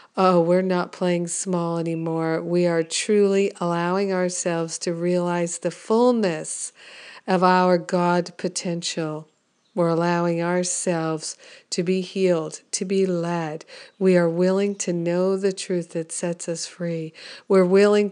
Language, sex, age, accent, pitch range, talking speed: English, female, 50-69, American, 170-195 Hz, 135 wpm